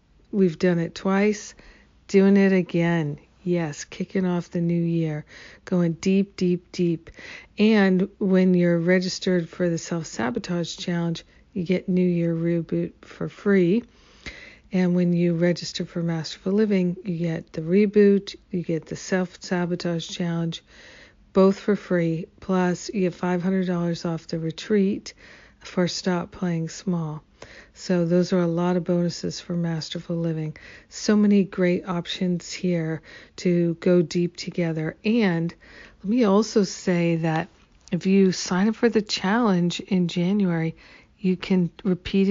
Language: English